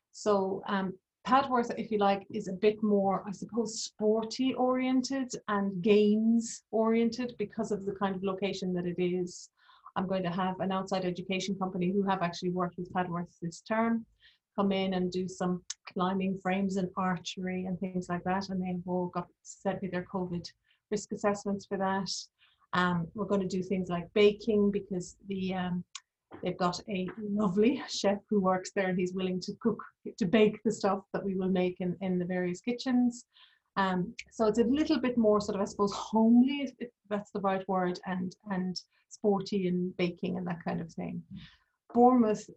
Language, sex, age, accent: English, female, 30-49, Irish